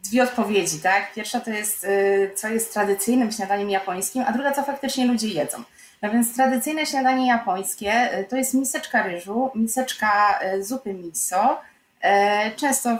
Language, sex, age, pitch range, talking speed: Polish, female, 20-39, 195-240 Hz, 140 wpm